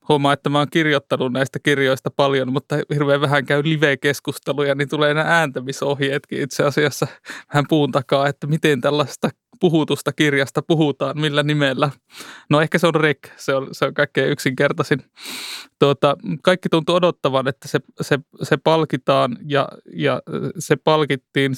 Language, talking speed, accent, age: Finnish, 140 wpm, native, 20-39